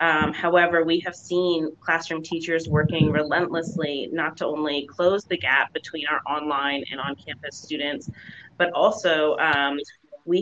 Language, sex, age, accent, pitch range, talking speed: English, female, 30-49, American, 155-175 Hz, 150 wpm